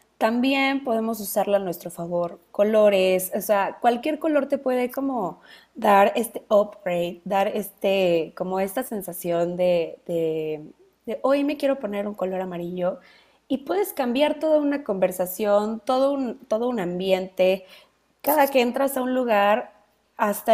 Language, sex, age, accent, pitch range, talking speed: Spanish, female, 20-39, Mexican, 190-255 Hz, 145 wpm